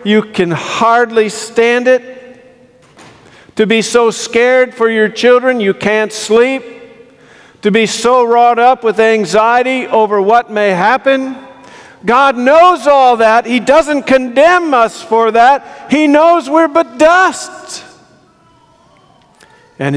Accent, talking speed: American, 125 wpm